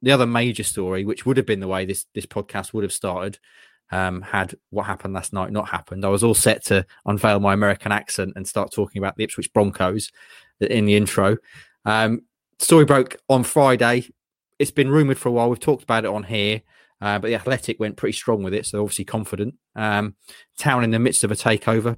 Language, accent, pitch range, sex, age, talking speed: English, British, 95-115 Hz, male, 20-39, 220 wpm